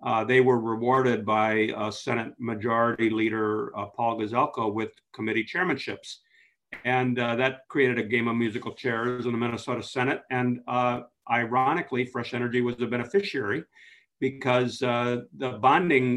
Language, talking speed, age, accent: English, 150 wpm, 50-69, American